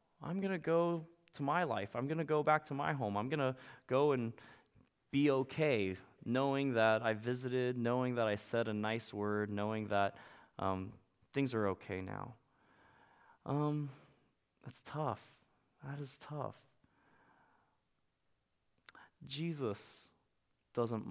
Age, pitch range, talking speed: 20-39, 100-125 Hz, 135 wpm